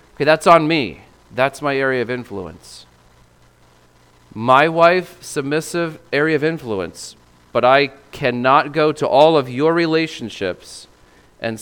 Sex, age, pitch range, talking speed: male, 40-59, 95-135 Hz, 130 wpm